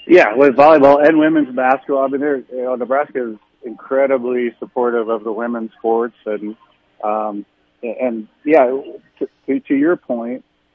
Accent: American